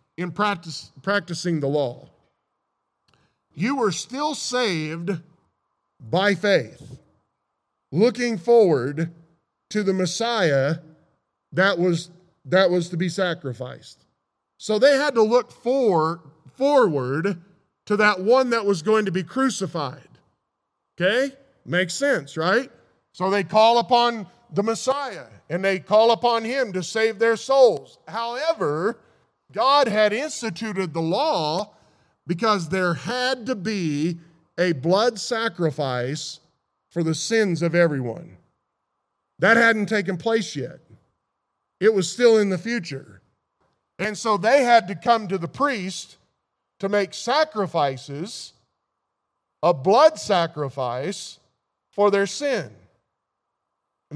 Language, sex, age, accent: English, male, 40-59, American